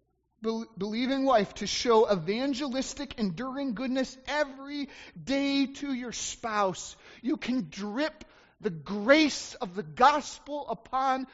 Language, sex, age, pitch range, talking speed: English, male, 30-49, 215-260 Hz, 110 wpm